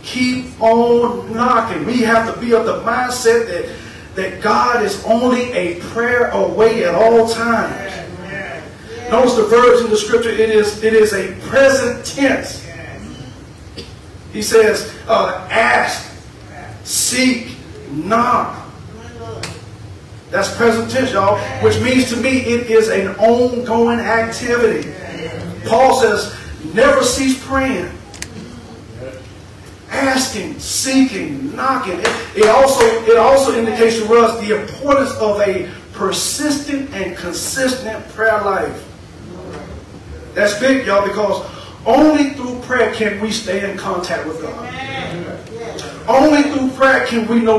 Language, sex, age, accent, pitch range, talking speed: English, male, 40-59, American, 210-255 Hz, 120 wpm